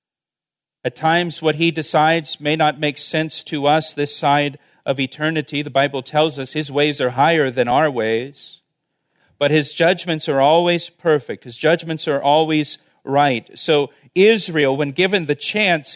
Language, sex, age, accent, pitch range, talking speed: English, male, 40-59, American, 140-175 Hz, 160 wpm